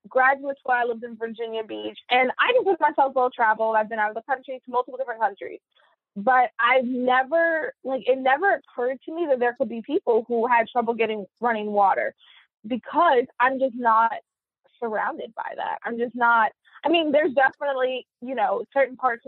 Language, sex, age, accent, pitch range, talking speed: English, female, 20-39, American, 220-265 Hz, 195 wpm